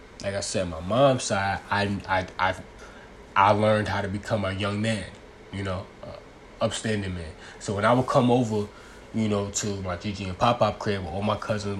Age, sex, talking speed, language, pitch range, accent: 20-39, male, 215 wpm, English, 95-115 Hz, American